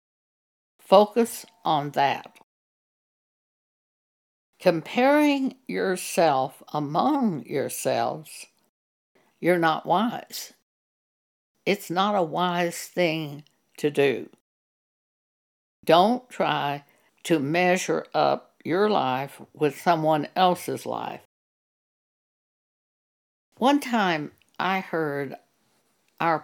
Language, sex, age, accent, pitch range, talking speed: English, female, 60-79, American, 155-215 Hz, 75 wpm